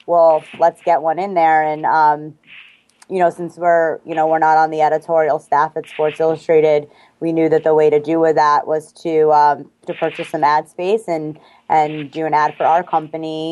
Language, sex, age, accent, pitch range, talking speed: English, female, 20-39, American, 155-170 Hz, 215 wpm